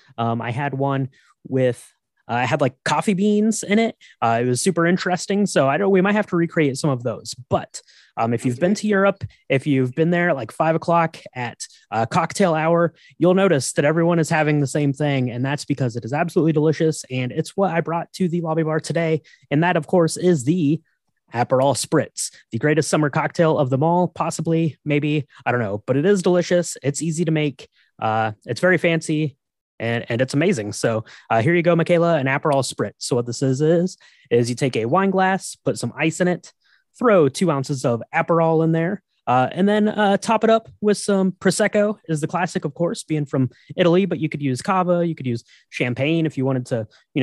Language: English